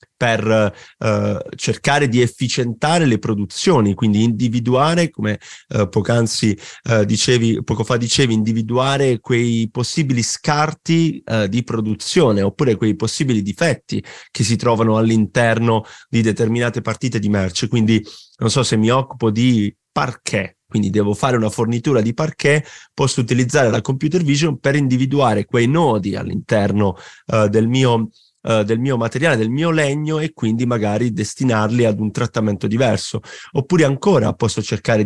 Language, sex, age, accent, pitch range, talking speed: Italian, male, 30-49, native, 110-130 Hz, 145 wpm